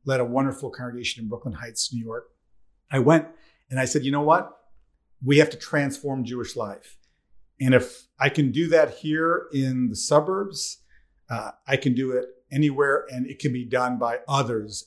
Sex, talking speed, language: male, 185 wpm, English